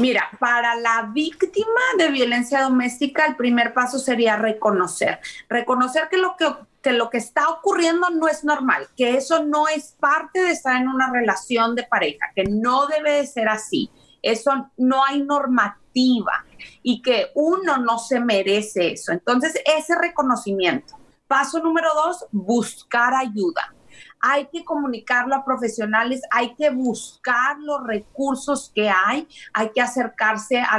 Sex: female